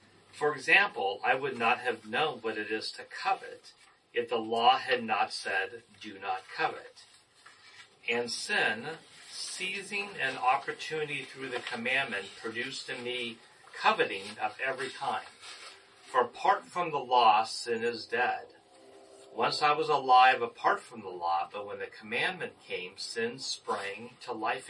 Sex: male